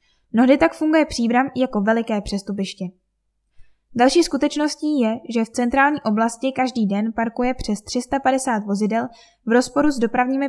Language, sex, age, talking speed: Czech, female, 10-29, 145 wpm